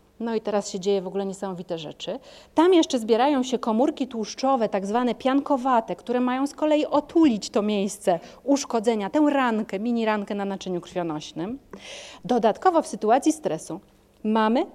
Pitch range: 200-275 Hz